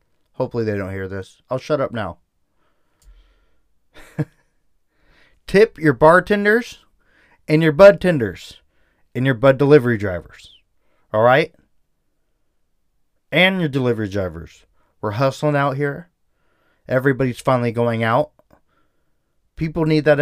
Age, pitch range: 20-39, 100-170 Hz